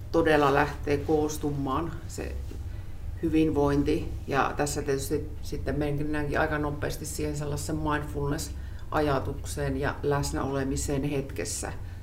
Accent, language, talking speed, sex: native, Finnish, 90 wpm, female